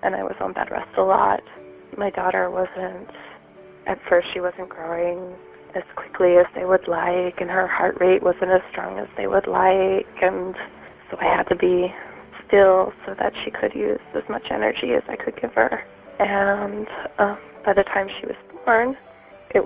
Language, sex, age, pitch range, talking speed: English, female, 20-39, 170-195 Hz, 190 wpm